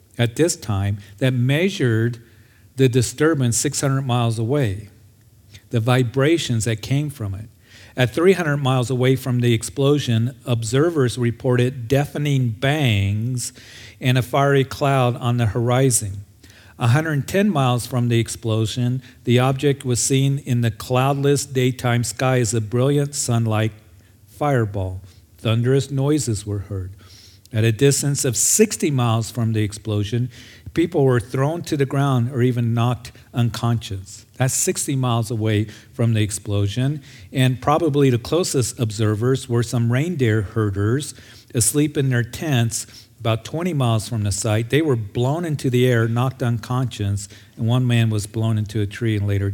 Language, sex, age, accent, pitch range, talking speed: English, male, 50-69, American, 110-135 Hz, 145 wpm